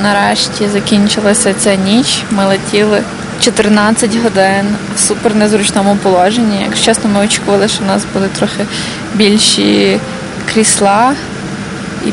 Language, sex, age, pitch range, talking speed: Ukrainian, female, 20-39, 195-220 Hz, 120 wpm